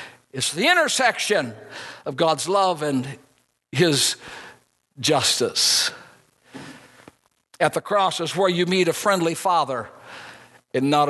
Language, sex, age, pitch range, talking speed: English, male, 60-79, 170-255 Hz, 115 wpm